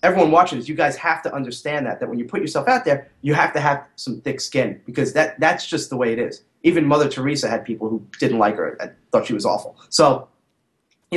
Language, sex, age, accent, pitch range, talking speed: English, male, 30-49, American, 125-160 Hz, 255 wpm